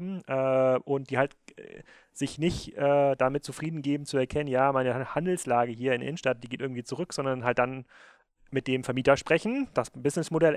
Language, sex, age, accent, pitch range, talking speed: German, male, 30-49, German, 130-155 Hz, 170 wpm